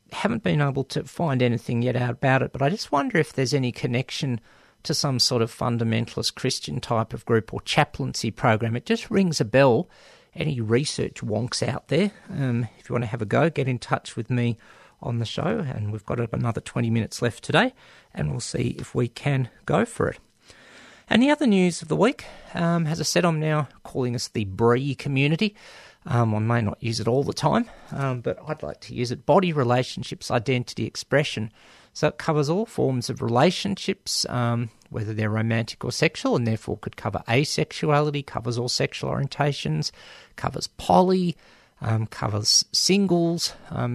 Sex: male